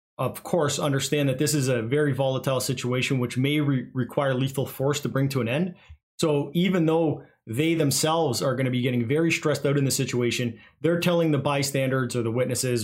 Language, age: English, 30-49